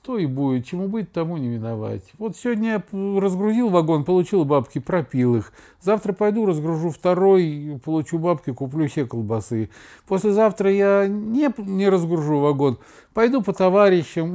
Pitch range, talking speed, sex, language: 130-195 Hz, 145 wpm, male, Russian